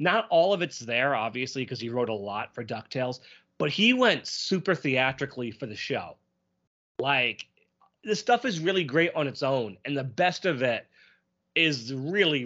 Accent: American